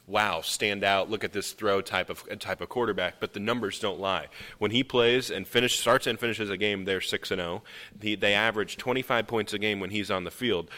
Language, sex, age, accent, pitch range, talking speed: English, male, 30-49, American, 100-125 Hz, 235 wpm